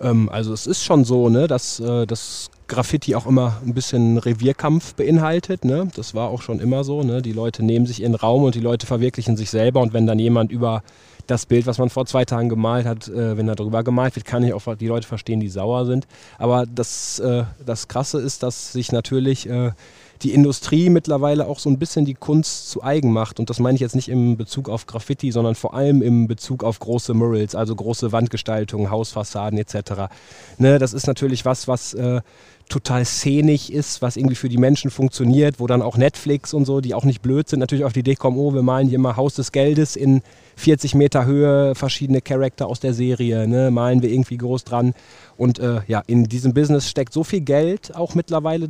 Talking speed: 210 wpm